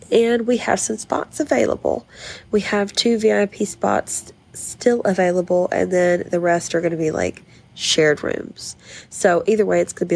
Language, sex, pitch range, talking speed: English, female, 165-205 Hz, 170 wpm